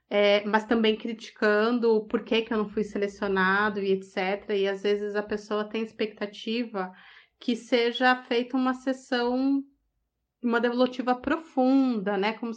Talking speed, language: 140 wpm, Portuguese